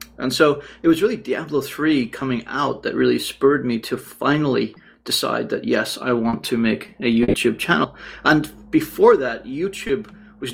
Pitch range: 115-150 Hz